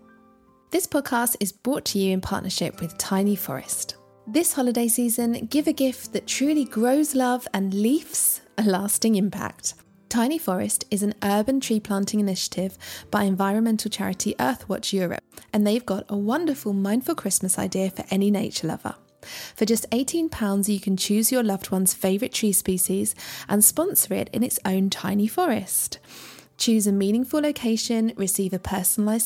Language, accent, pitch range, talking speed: English, British, 195-240 Hz, 160 wpm